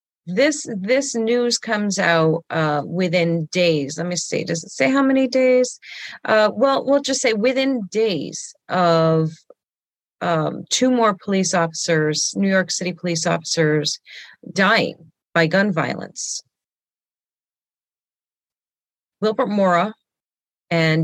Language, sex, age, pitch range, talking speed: English, female, 40-59, 155-185 Hz, 120 wpm